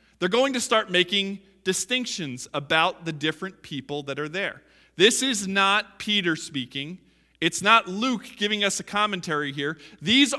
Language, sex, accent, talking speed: English, male, American, 155 wpm